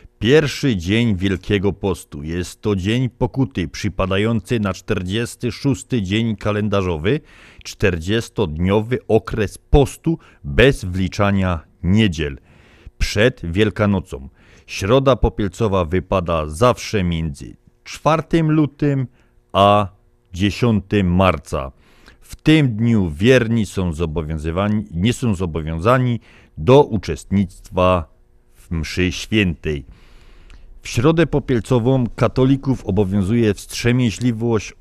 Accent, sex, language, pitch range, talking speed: native, male, Polish, 85-115 Hz, 85 wpm